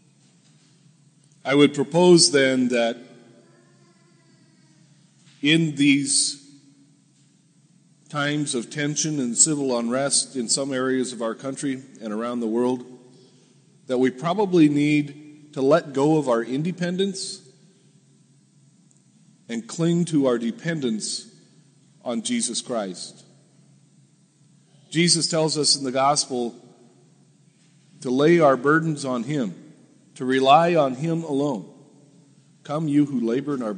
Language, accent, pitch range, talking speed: English, American, 130-155 Hz, 115 wpm